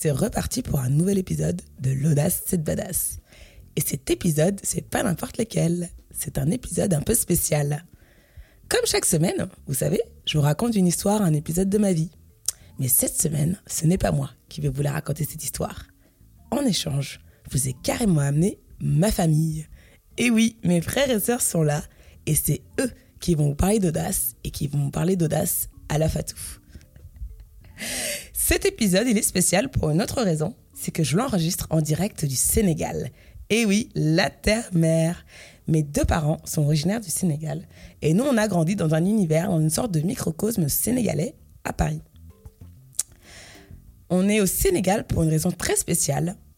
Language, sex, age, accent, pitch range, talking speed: French, female, 20-39, French, 150-195 Hz, 180 wpm